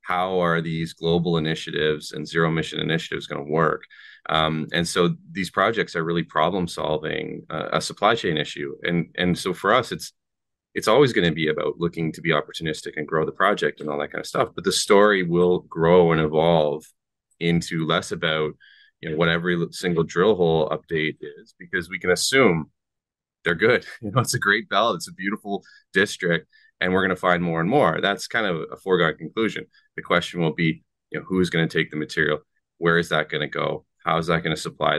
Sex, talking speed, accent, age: male, 215 wpm, American, 30-49